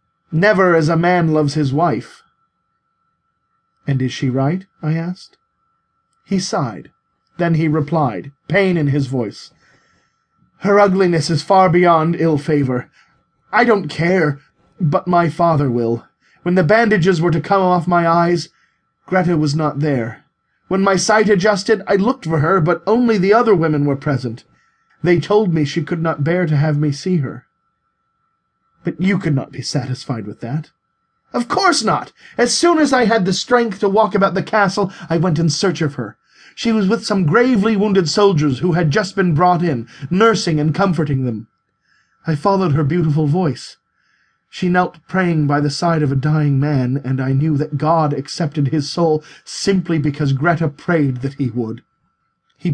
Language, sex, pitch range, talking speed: English, male, 145-190 Hz, 175 wpm